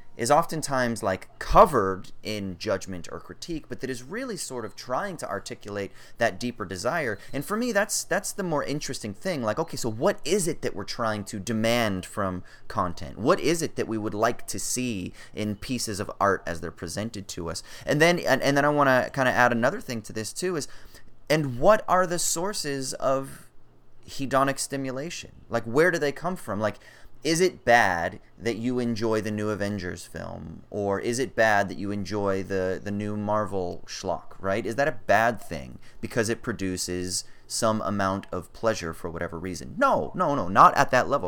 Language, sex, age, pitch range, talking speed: English, male, 30-49, 100-135 Hz, 200 wpm